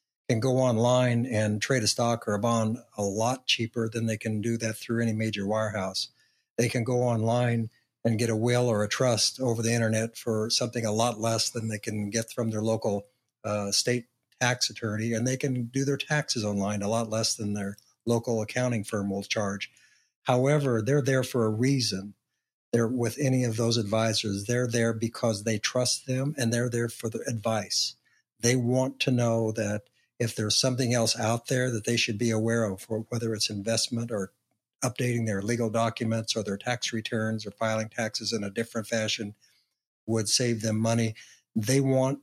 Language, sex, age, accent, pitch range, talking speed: English, male, 60-79, American, 110-125 Hz, 190 wpm